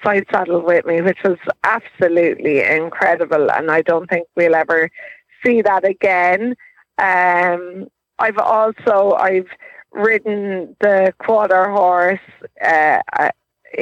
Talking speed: 115 wpm